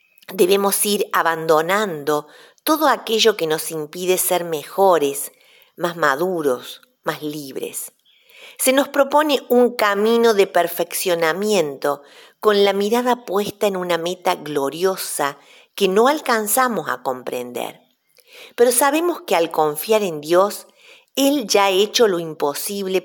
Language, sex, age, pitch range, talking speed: Spanish, female, 50-69, 165-255 Hz, 120 wpm